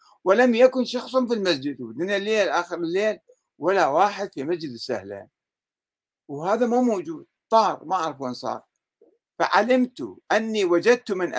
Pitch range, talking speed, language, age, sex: 135-210 Hz, 135 wpm, Arabic, 50-69, male